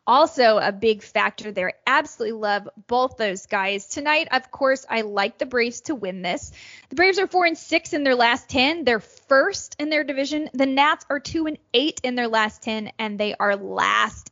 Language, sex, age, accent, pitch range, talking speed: English, female, 10-29, American, 215-280 Hz, 205 wpm